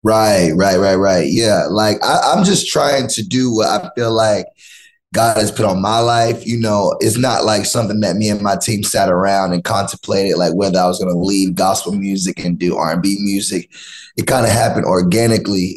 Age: 20-39